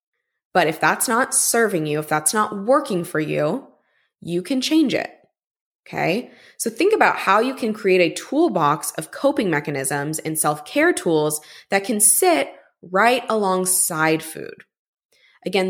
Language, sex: English, female